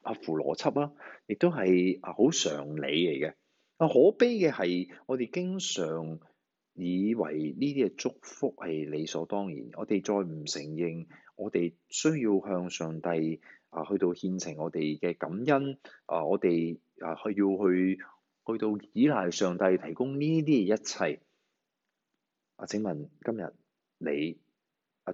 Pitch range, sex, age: 80-105 Hz, male, 30-49